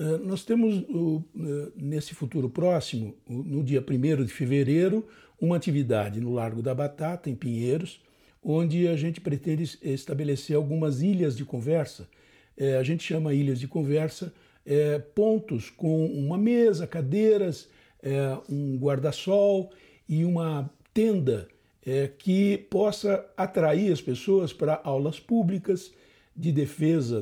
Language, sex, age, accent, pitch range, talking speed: Portuguese, male, 60-79, Brazilian, 135-180 Hz, 115 wpm